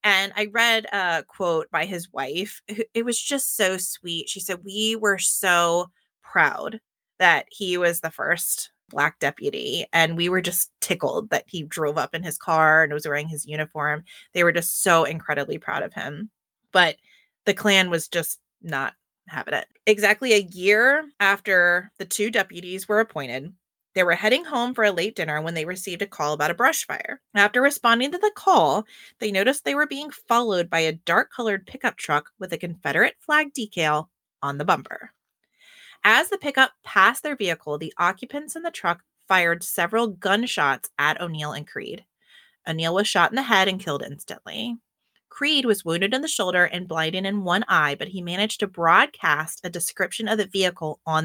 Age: 20-39